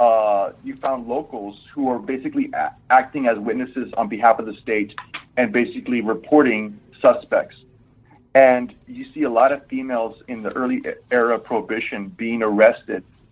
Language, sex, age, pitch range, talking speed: English, male, 30-49, 105-130 Hz, 155 wpm